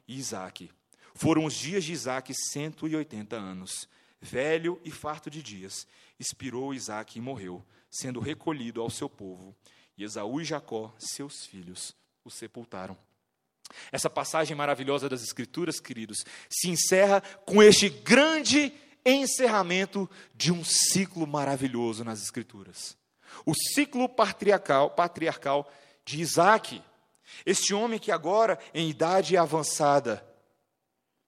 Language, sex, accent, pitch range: Portuguese, male, Brazilian, 135-195 Hz